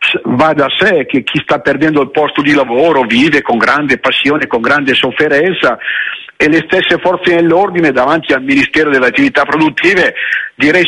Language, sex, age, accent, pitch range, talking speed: Italian, male, 50-69, native, 155-210 Hz, 165 wpm